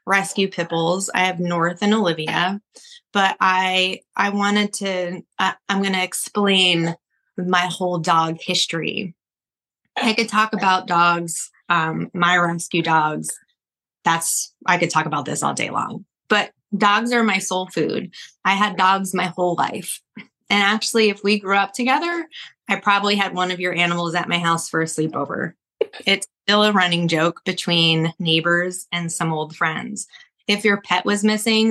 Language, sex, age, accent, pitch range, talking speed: English, female, 20-39, American, 175-205 Hz, 165 wpm